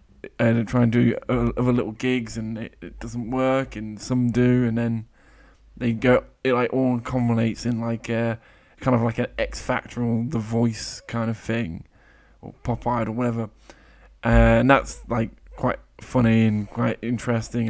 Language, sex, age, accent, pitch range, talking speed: English, male, 20-39, British, 110-125 Hz, 170 wpm